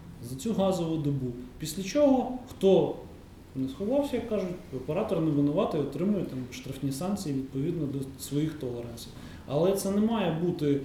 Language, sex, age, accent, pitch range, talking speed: Ukrainian, male, 20-39, native, 135-175 Hz, 150 wpm